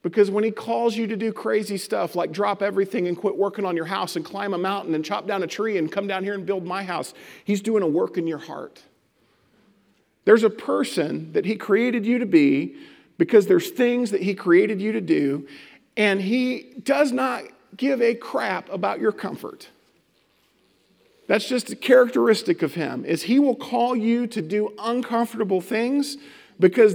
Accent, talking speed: American, 190 wpm